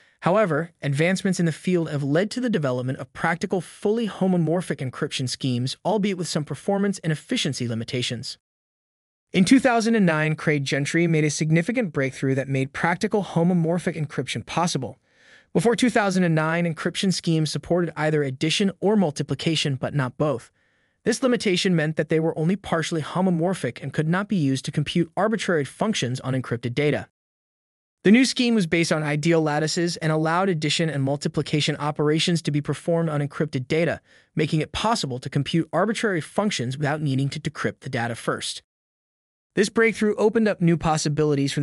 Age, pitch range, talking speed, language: 20-39, 145-185 Hz, 160 wpm, English